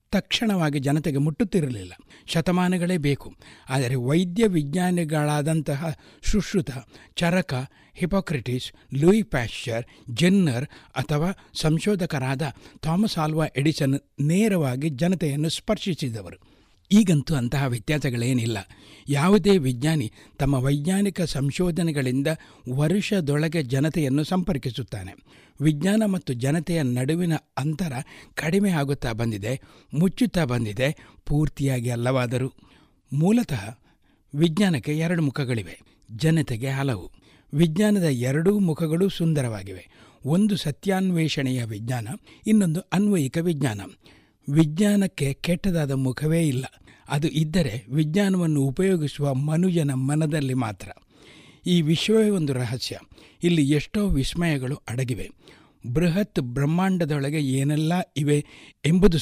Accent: native